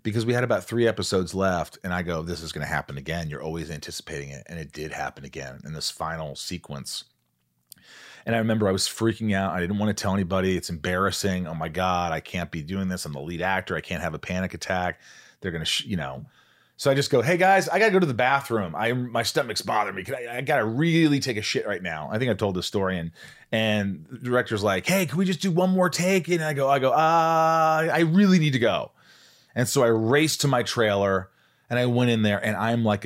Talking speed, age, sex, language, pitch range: 255 wpm, 30-49, male, English, 90-120 Hz